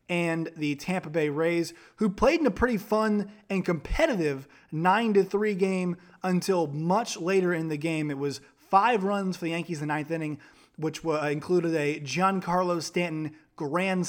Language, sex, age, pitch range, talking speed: English, male, 30-49, 145-180 Hz, 160 wpm